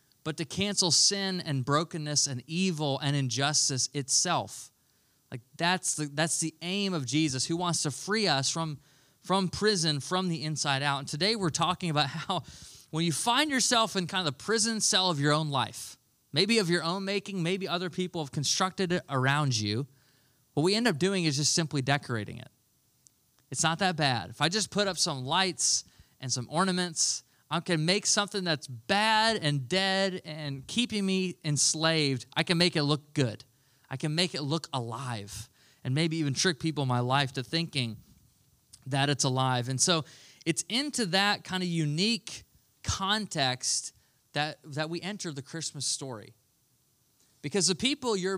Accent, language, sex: American, English, male